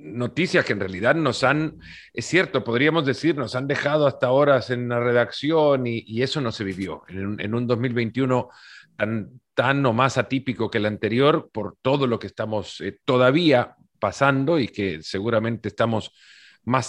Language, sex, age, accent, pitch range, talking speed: Spanish, male, 40-59, Mexican, 115-145 Hz, 180 wpm